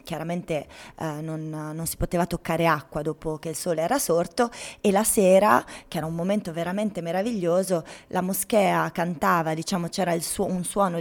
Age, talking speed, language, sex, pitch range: 20-39, 165 wpm, Italian, female, 165-190 Hz